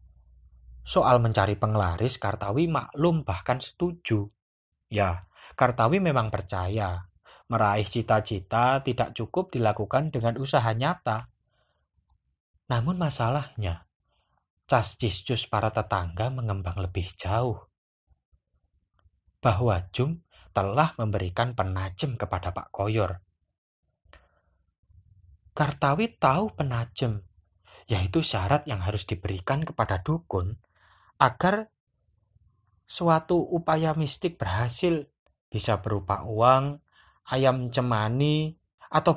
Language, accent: Indonesian, native